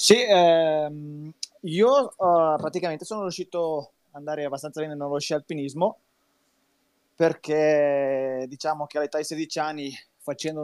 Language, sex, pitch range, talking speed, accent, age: Italian, male, 130-155 Hz, 125 wpm, native, 20-39